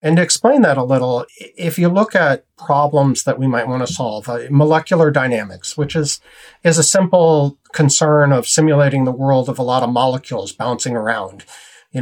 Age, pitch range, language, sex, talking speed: 40-59, 125-155 Hz, English, male, 190 wpm